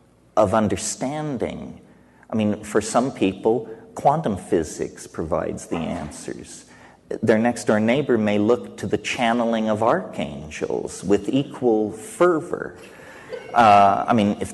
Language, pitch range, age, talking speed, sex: English, 95-120 Hz, 40-59, 120 wpm, male